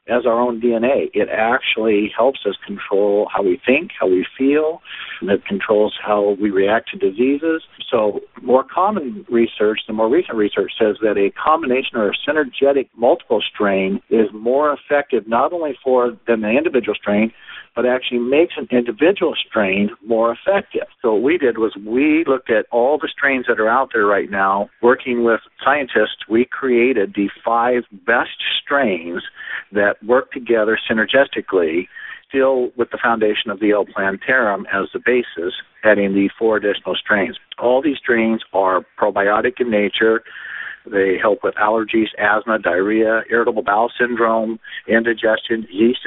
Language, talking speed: English, 160 wpm